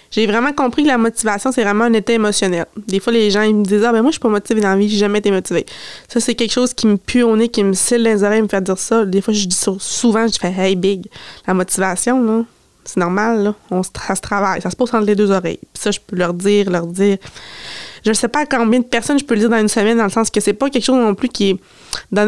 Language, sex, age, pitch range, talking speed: French, female, 20-39, 195-230 Hz, 310 wpm